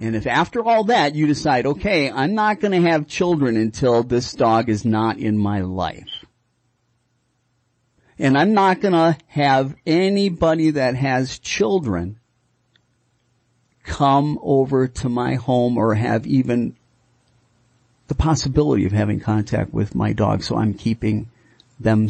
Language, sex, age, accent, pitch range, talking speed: English, male, 50-69, American, 115-135 Hz, 140 wpm